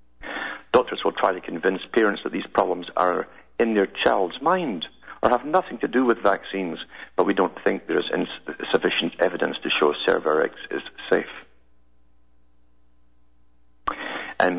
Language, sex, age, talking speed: English, male, 60-79, 135 wpm